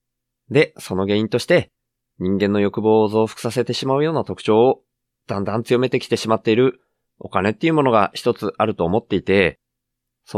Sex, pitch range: male, 110-130 Hz